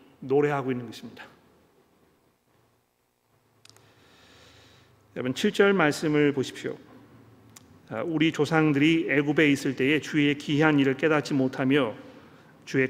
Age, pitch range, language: 40-59, 135-180 Hz, Korean